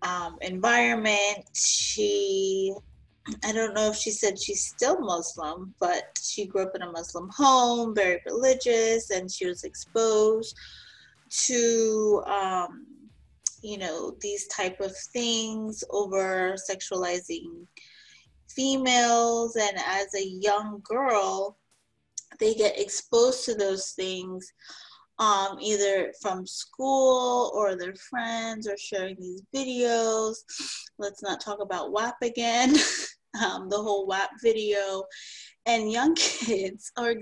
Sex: female